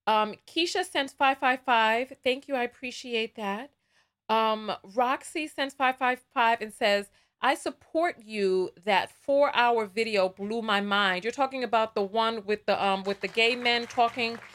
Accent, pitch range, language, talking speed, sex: American, 215-290 Hz, English, 175 wpm, female